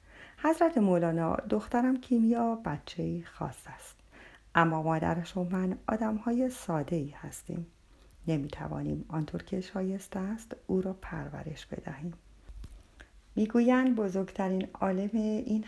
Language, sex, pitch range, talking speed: Persian, female, 160-220 Hz, 105 wpm